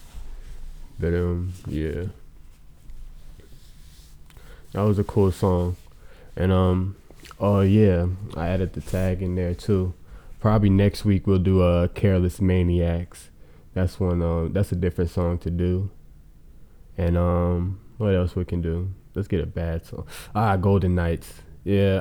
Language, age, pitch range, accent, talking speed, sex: English, 20-39, 80-95 Hz, American, 145 wpm, male